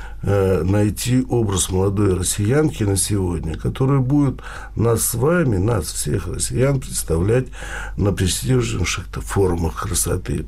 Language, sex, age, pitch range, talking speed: Russian, male, 60-79, 90-110 Hz, 110 wpm